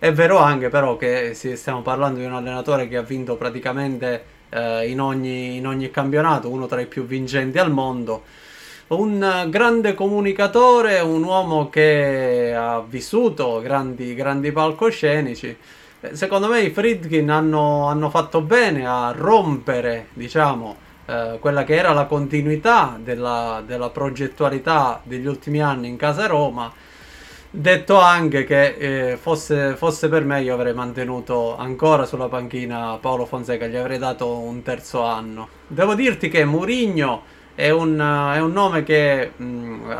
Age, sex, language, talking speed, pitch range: 20-39, male, Italian, 145 wpm, 125-160 Hz